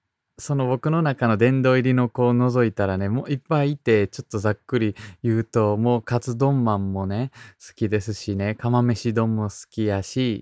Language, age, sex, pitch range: Japanese, 20-39, male, 100-140 Hz